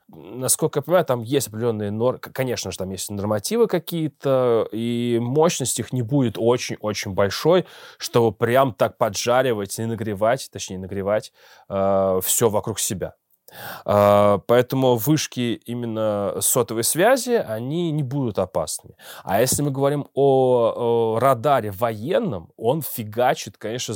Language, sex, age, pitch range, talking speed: Russian, male, 20-39, 110-140 Hz, 130 wpm